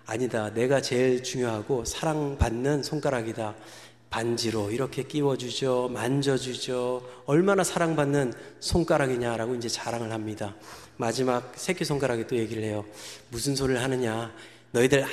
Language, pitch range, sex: Korean, 120-145 Hz, male